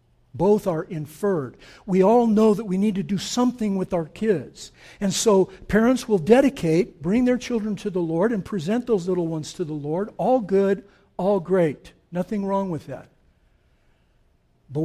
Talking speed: 175 wpm